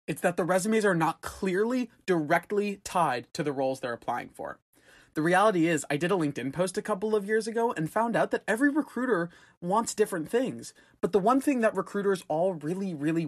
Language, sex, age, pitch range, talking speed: English, male, 20-39, 140-200 Hz, 210 wpm